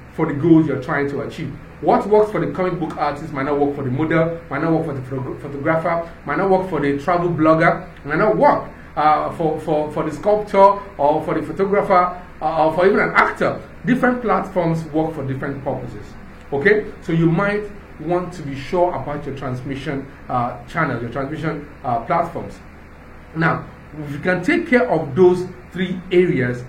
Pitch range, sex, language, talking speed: 140-185 Hz, male, English, 185 wpm